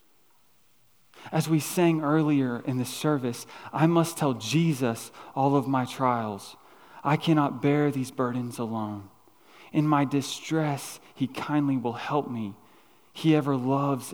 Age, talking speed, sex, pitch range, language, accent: 30-49, 135 wpm, male, 125-165 Hz, English, American